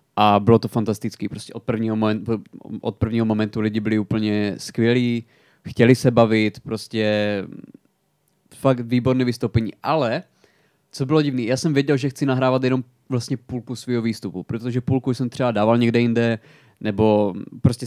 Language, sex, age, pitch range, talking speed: Czech, male, 20-39, 115-135 Hz, 150 wpm